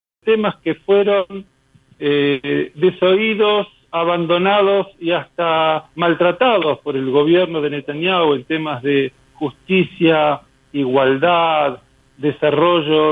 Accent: Argentinian